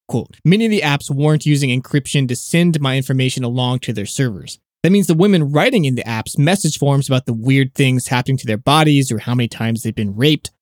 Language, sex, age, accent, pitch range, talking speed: English, male, 20-39, American, 125-170 Hz, 225 wpm